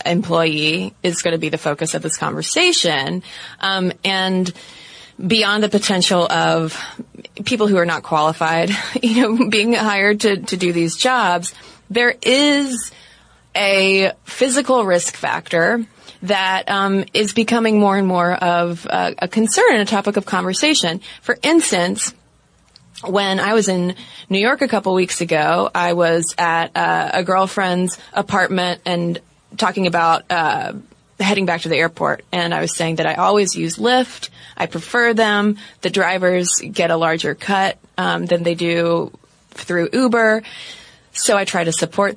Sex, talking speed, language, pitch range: female, 155 wpm, English, 170-210 Hz